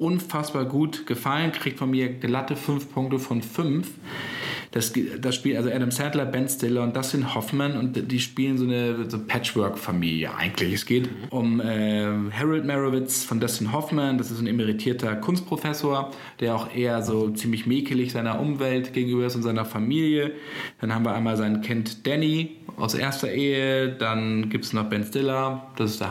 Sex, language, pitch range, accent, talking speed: male, German, 115-140 Hz, German, 175 wpm